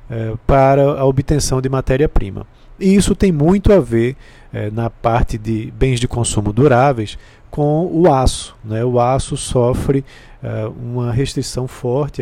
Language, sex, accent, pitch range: Portuguese, male, Brazilian, 115-150 Hz